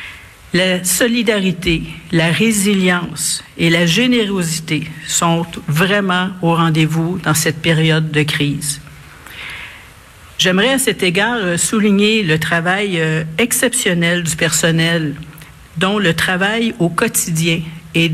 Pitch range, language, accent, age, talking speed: 160-200 Hz, French, Canadian, 60-79, 105 wpm